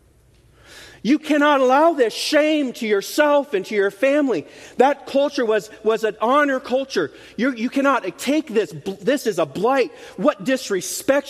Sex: male